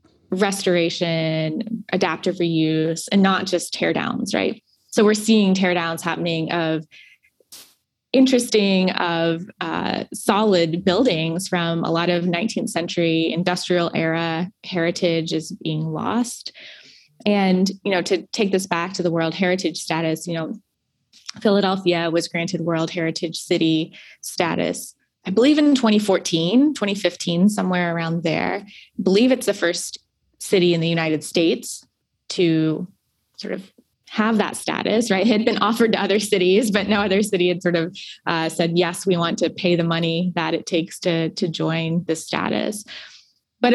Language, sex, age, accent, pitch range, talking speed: English, female, 20-39, American, 165-205 Hz, 150 wpm